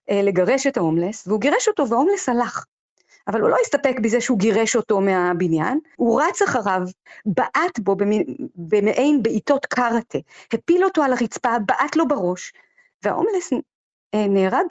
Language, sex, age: Hebrew, female, 40-59